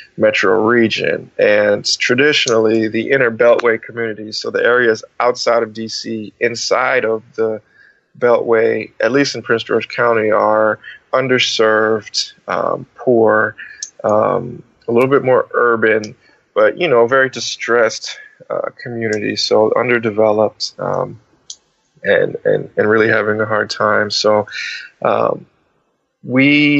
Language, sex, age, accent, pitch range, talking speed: English, male, 20-39, American, 110-130 Hz, 125 wpm